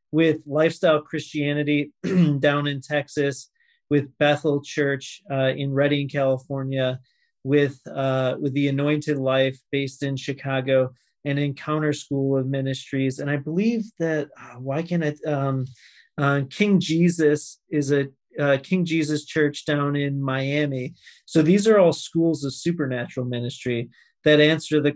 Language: English